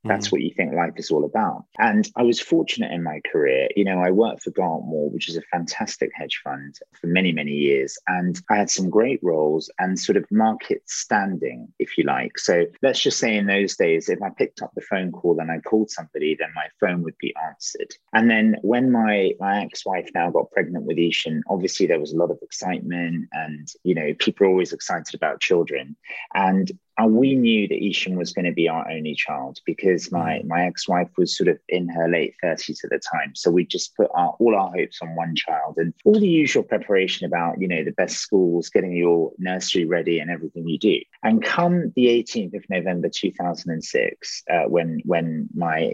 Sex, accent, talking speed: male, British, 215 wpm